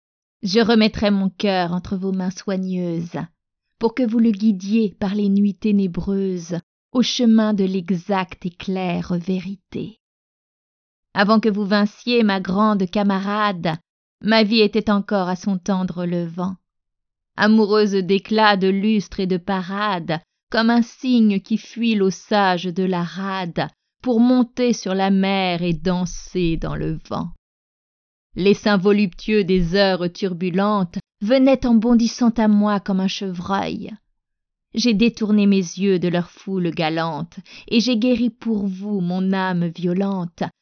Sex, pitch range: female, 180-215 Hz